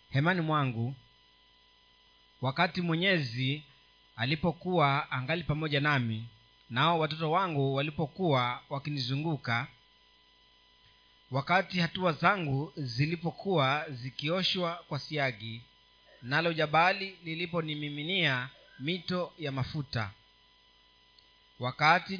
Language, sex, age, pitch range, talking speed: Swahili, male, 30-49, 135-170 Hz, 75 wpm